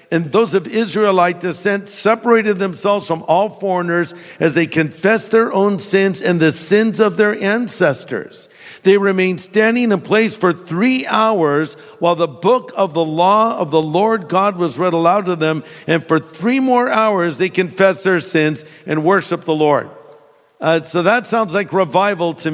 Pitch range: 155-195 Hz